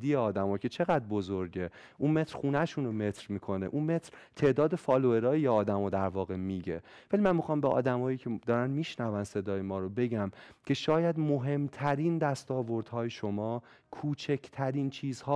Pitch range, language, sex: 105-145 Hz, Persian, male